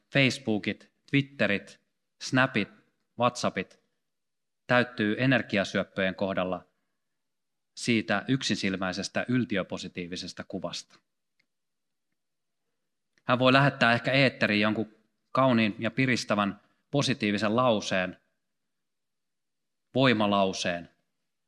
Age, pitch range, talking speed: 30-49, 95-125 Hz, 65 wpm